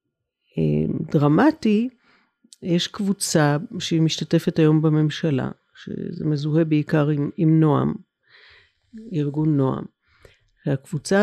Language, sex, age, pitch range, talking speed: Hebrew, female, 60-79, 155-195 Hz, 80 wpm